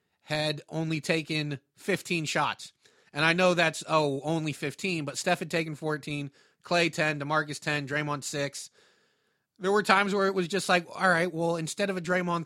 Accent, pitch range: American, 145-180 Hz